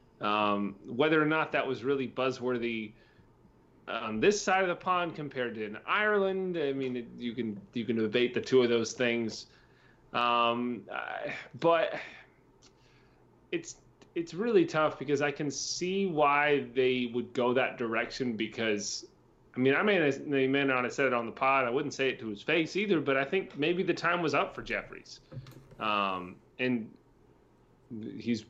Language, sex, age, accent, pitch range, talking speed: English, male, 30-49, American, 120-145 Hz, 170 wpm